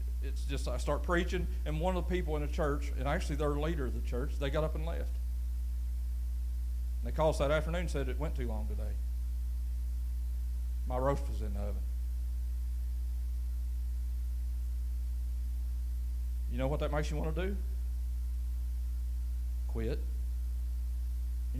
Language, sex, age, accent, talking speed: English, male, 40-59, American, 155 wpm